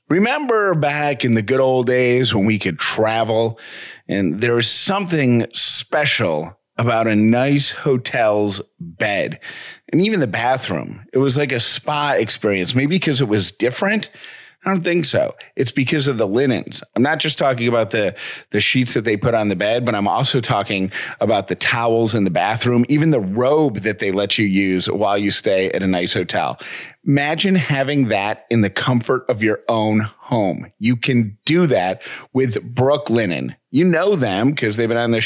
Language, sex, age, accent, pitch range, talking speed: English, male, 40-59, American, 110-145 Hz, 185 wpm